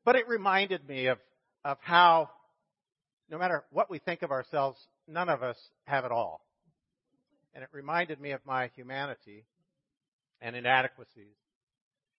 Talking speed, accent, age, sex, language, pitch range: 145 wpm, American, 50-69, male, English, 135-185 Hz